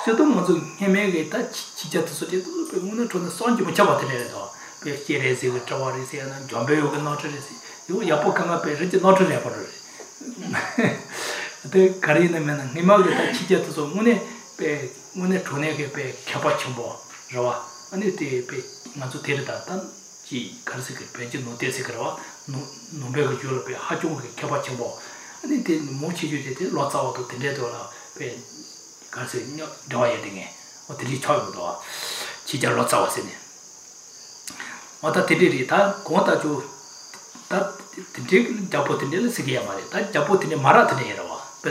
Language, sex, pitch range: English, male, 135-185 Hz